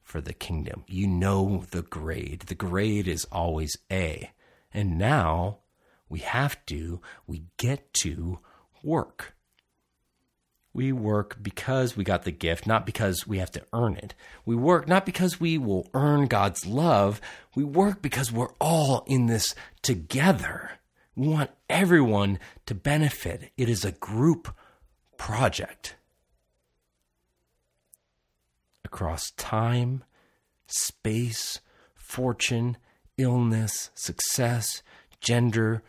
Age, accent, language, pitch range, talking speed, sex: 40-59, American, English, 85-120 Hz, 115 wpm, male